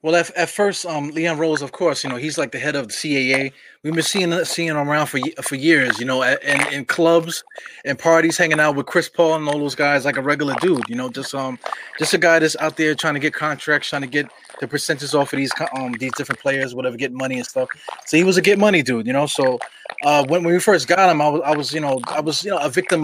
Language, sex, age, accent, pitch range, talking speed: English, male, 20-39, American, 145-175 Hz, 280 wpm